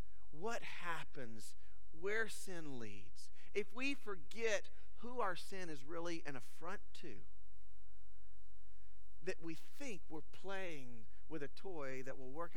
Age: 40-59